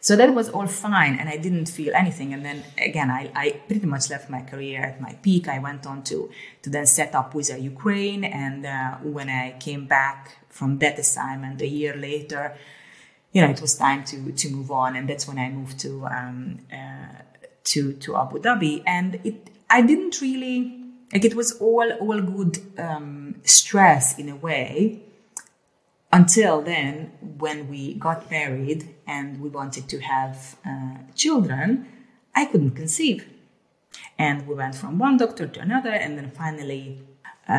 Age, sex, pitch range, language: 30-49, female, 135-180 Hz, English